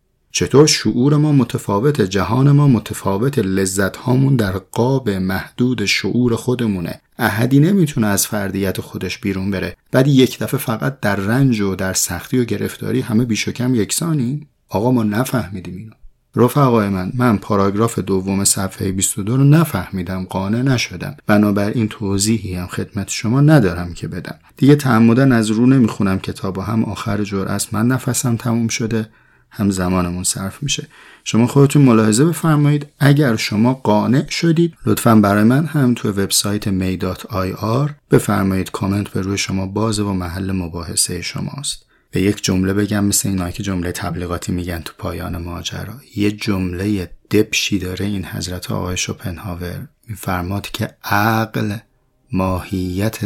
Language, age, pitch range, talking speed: Persian, 30-49, 95-125 Hz, 140 wpm